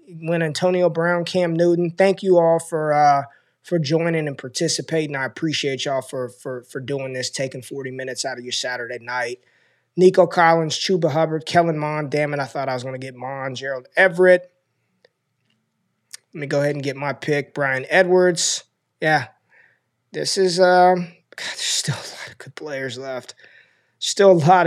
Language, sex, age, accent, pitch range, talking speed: English, male, 20-39, American, 135-175 Hz, 180 wpm